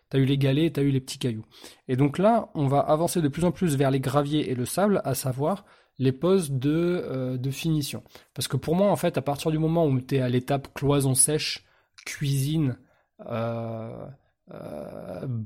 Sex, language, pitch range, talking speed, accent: male, French, 125-155 Hz, 210 wpm, French